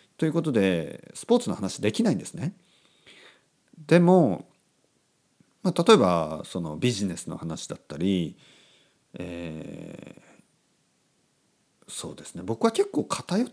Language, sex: Japanese, male